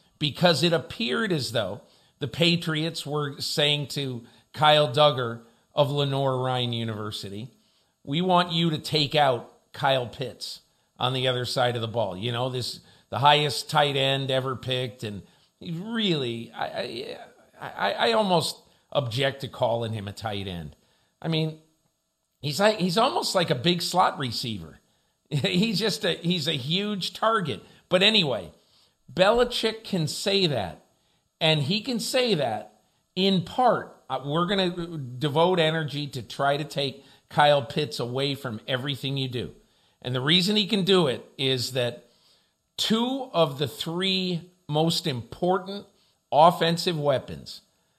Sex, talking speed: male, 145 wpm